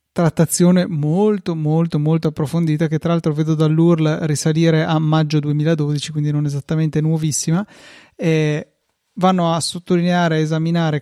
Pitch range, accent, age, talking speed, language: 150-165 Hz, native, 30-49, 125 wpm, Italian